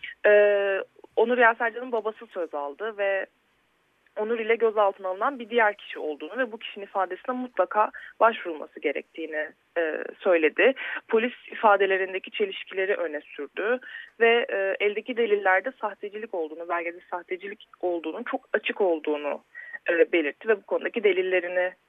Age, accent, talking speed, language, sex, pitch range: 30-49, native, 130 wpm, Turkish, female, 180-250 Hz